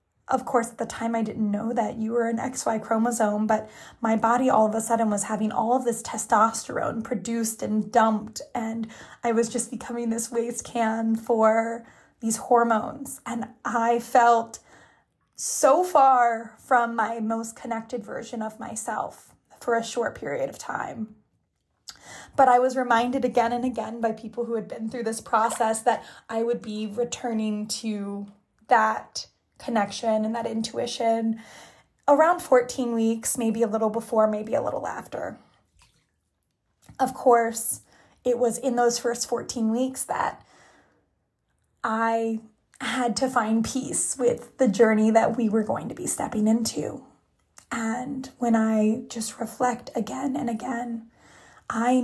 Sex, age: female, 20-39